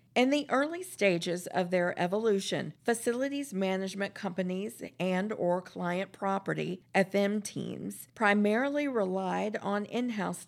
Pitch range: 180-220 Hz